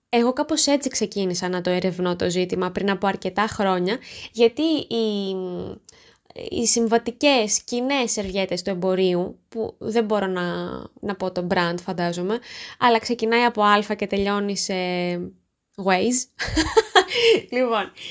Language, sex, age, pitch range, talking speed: Greek, female, 20-39, 195-260 Hz, 125 wpm